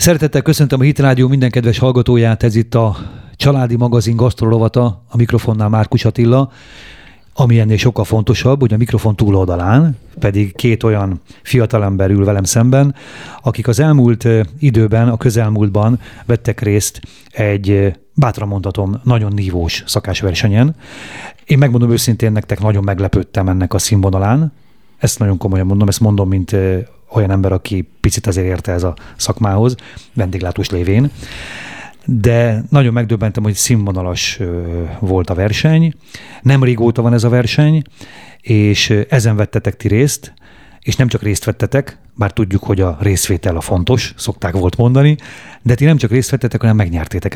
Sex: male